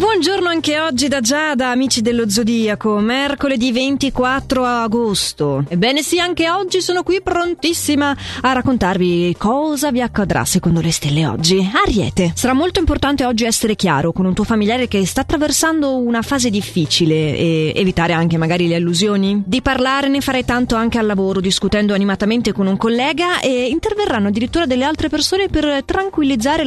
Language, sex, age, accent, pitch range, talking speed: Italian, female, 20-39, native, 180-275 Hz, 160 wpm